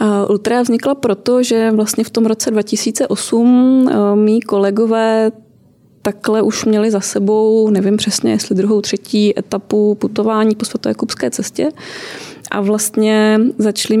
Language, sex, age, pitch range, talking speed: Czech, female, 20-39, 200-230 Hz, 130 wpm